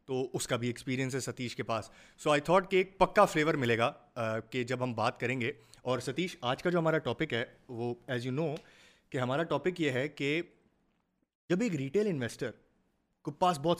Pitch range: 125-180 Hz